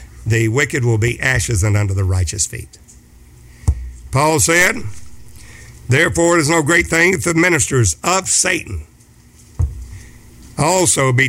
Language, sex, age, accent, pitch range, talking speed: English, male, 60-79, American, 90-150 Hz, 135 wpm